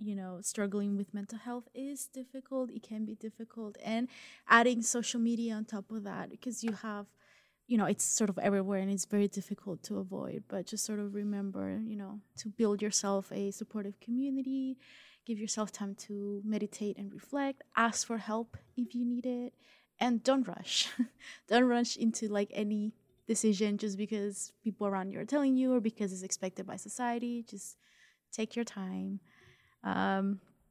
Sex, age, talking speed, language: female, 20-39, 175 wpm, English